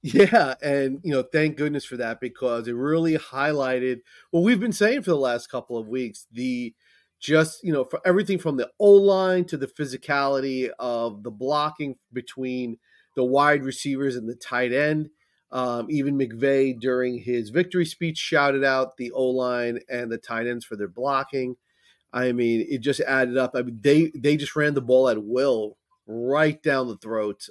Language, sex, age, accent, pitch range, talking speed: English, male, 30-49, American, 115-145 Hz, 180 wpm